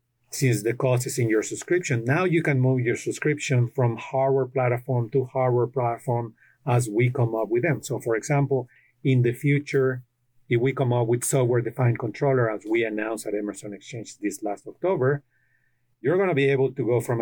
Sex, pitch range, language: male, 115-135 Hz, English